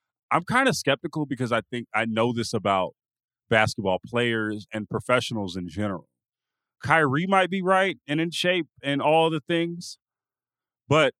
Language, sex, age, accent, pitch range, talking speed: English, male, 30-49, American, 105-145 Hz, 155 wpm